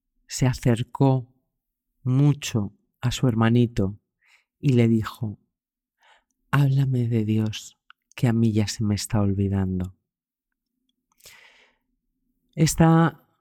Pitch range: 115-150 Hz